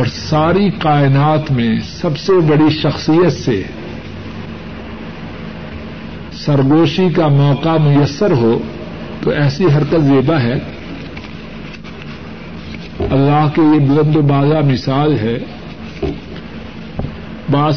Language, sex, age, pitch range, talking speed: Urdu, male, 60-79, 130-160 Hz, 95 wpm